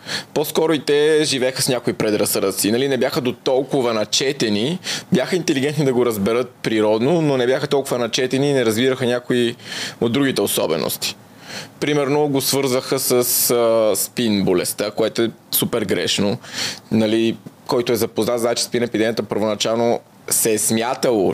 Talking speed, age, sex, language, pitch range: 150 wpm, 20-39, male, English, 110-130 Hz